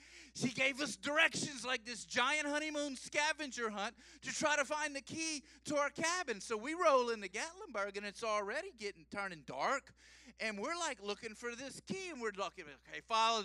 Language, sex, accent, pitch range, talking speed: English, male, American, 185-290 Hz, 190 wpm